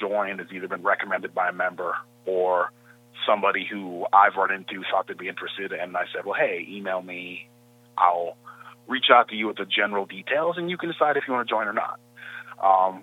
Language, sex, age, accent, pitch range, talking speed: English, male, 30-49, American, 95-120 Hz, 210 wpm